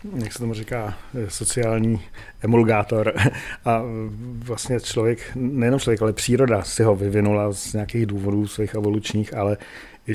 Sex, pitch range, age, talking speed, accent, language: male, 105-115 Hz, 40-59, 135 wpm, native, Czech